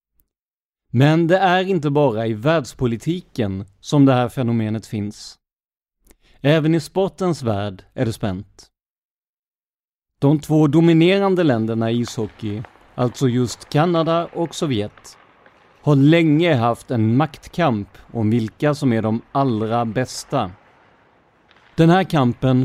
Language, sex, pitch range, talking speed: Swedish, male, 115-155 Hz, 120 wpm